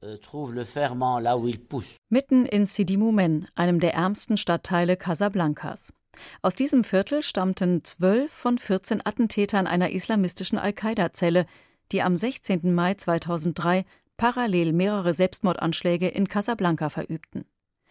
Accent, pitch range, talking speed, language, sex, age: German, 175-220 Hz, 100 wpm, German, female, 40-59